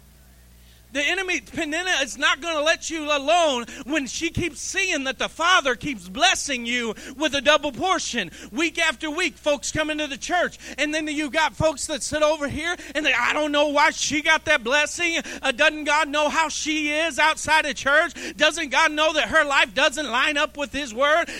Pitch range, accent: 250-320 Hz, American